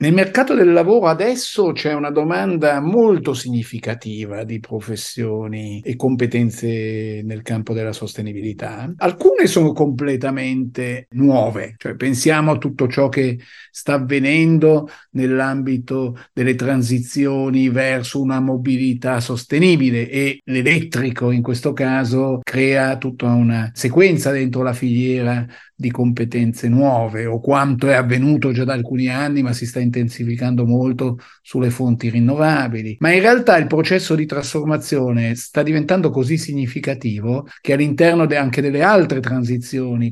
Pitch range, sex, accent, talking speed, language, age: 120-150 Hz, male, native, 130 wpm, Italian, 50-69